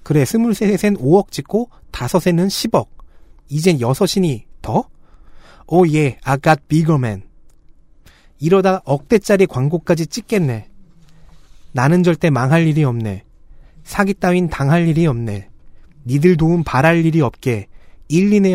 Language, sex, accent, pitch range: Korean, male, native, 125-175 Hz